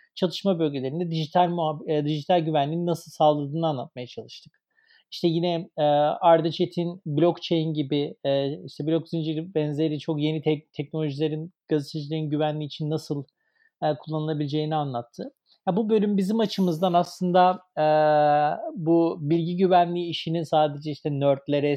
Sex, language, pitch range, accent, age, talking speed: male, Turkish, 150-180 Hz, native, 40-59, 125 wpm